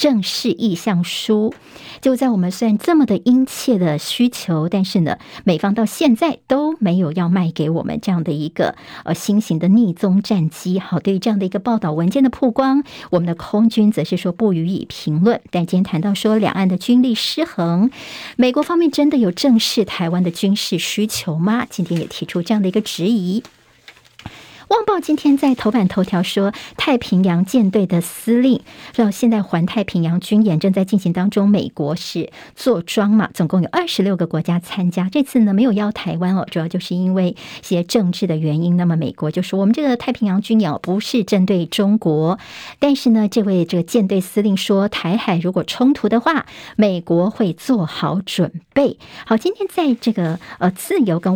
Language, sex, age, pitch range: Chinese, male, 50-69, 175-230 Hz